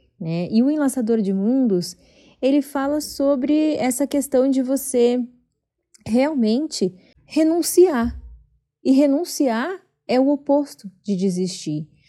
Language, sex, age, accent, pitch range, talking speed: Portuguese, female, 30-49, Brazilian, 210-260 Hz, 110 wpm